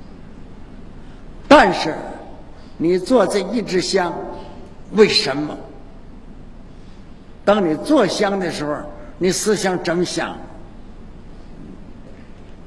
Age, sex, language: 60-79, male, Chinese